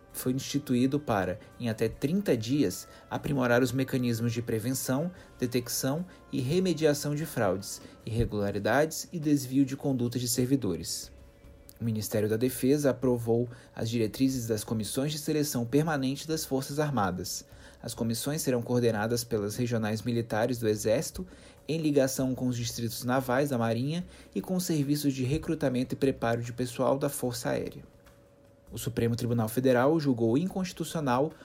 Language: Portuguese